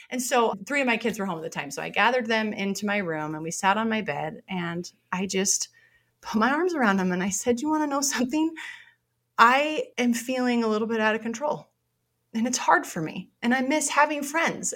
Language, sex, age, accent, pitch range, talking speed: English, female, 30-49, American, 190-280 Hz, 240 wpm